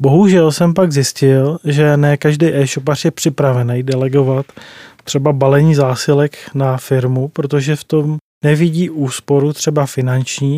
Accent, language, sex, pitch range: native, Czech, male, 135-160 Hz